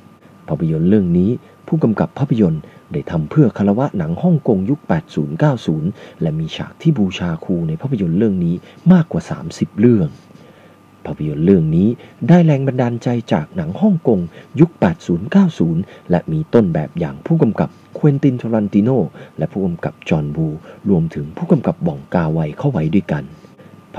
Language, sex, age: Thai, male, 30-49